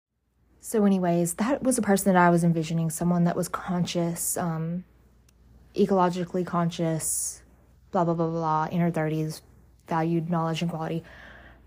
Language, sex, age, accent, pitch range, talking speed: English, female, 20-39, American, 165-190 Hz, 140 wpm